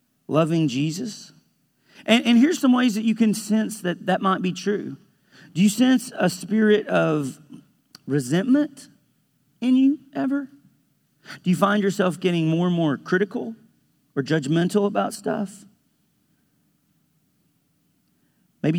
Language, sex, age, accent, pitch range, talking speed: English, male, 40-59, American, 150-205 Hz, 130 wpm